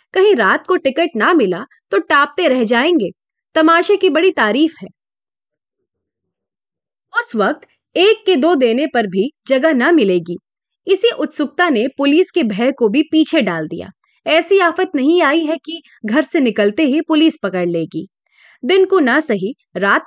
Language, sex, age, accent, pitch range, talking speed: Hindi, female, 30-49, native, 225-350 Hz, 165 wpm